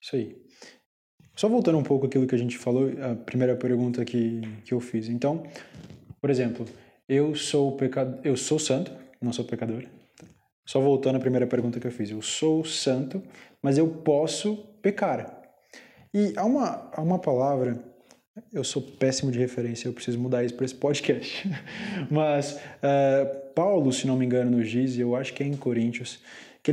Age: 20-39